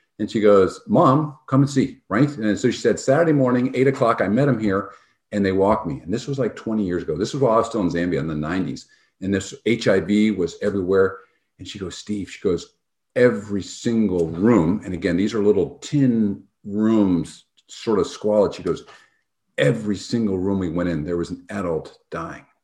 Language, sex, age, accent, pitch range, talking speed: English, male, 50-69, American, 95-130 Hz, 210 wpm